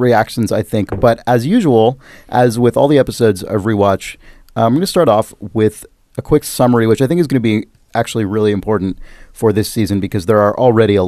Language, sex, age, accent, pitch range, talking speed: English, male, 30-49, American, 100-135 Hz, 215 wpm